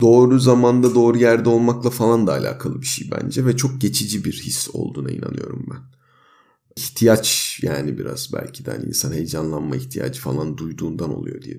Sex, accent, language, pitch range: male, native, Turkish, 110-135 Hz